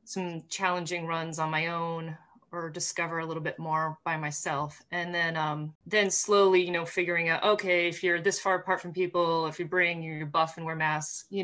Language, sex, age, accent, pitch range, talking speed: English, female, 30-49, American, 160-185 Hz, 210 wpm